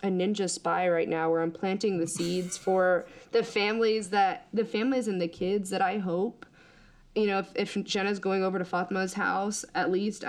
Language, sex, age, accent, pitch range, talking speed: English, female, 20-39, American, 170-200 Hz, 200 wpm